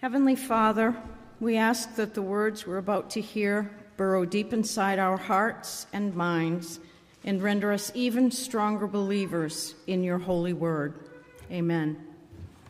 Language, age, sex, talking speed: English, 50-69, female, 135 wpm